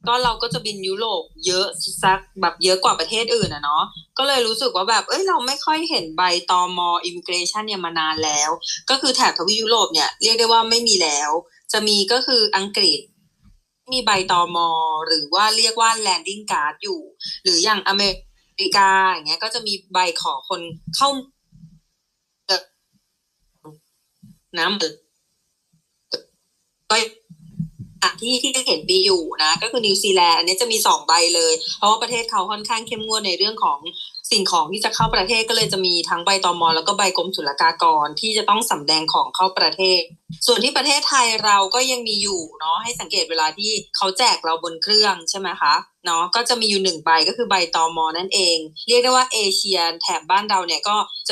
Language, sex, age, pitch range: Thai, female, 20-39, 170-235 Hz